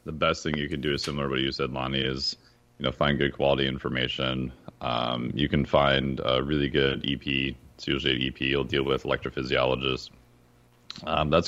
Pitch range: 65-75 Hz